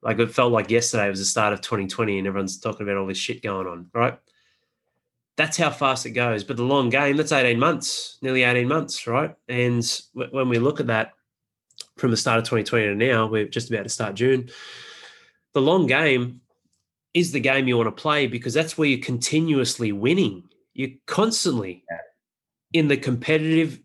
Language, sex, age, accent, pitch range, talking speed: English, male, 20-39, Australian, 110-135 Hz, 190 wpm